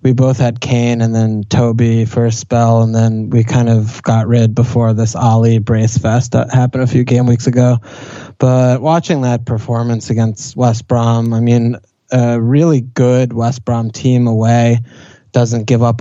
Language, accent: English, American